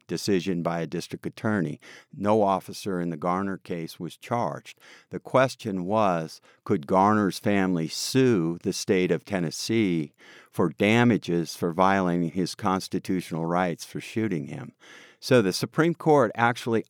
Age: 50-69